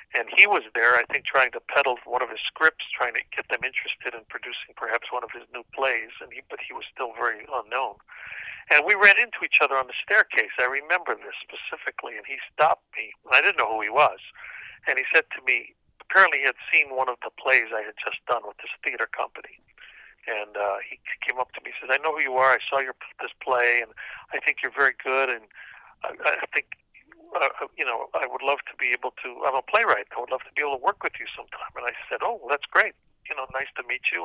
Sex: male